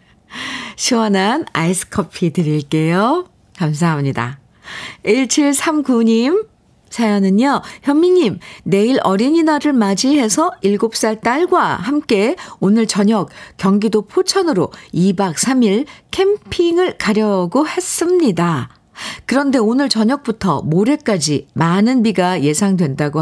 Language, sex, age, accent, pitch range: Korean, female, 50-69, native, 175-265 Hz